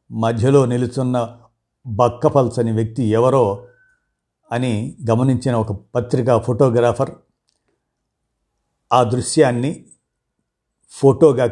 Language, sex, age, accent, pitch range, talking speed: Telugu, male, 50-69, native, 115-135 Hz, 70 wpm